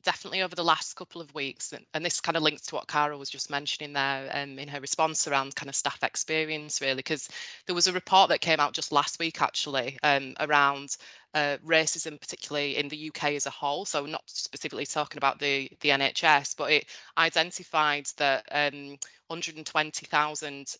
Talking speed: 190 wpm